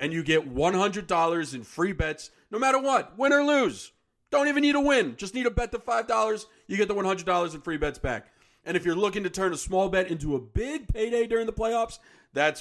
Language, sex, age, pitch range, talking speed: English, male, 40-59, 140-185 Hz, 235 wpm